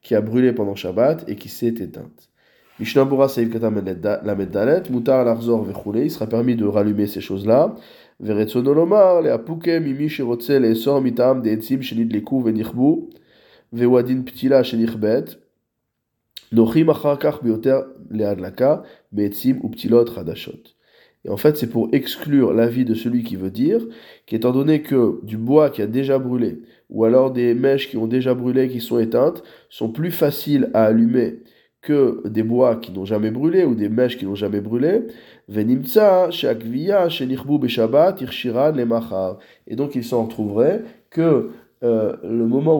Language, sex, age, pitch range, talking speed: French, male, 20-39, 110-135 Hz, 105 wpm